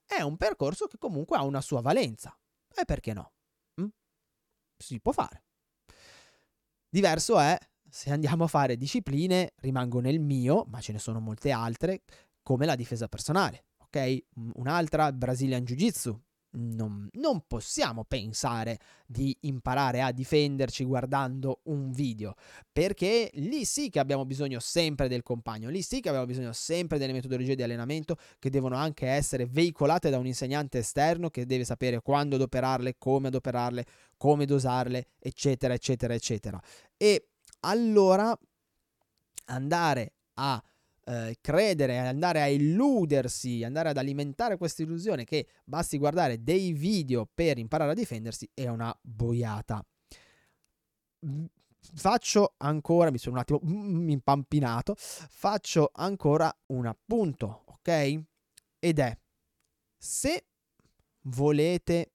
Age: 20-39